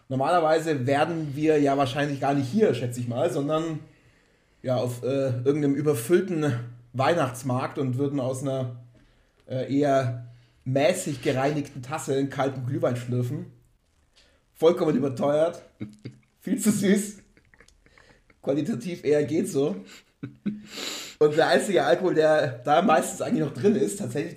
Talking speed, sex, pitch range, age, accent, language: 130 wpm, male, 125-155 Hz, 30-49, German, German